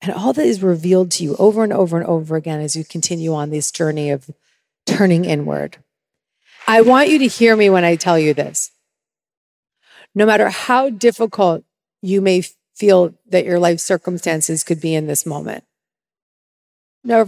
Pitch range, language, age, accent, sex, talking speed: 160-200 Hz, English, 40-59, American, female, 175 wpm